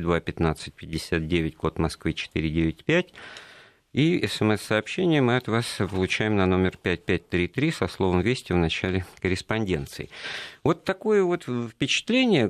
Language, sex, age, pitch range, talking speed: Russian, male, 50-69, 85-120 Hz, 145 wpm